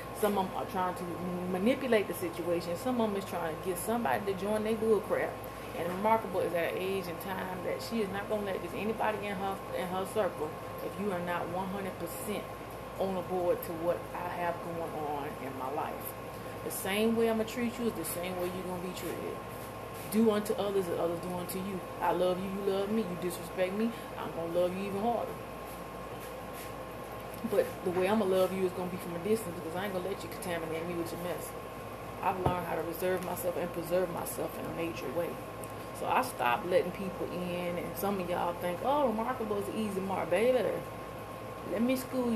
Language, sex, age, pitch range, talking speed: English, female, 30-49, 175-220 Hz, 225 wpm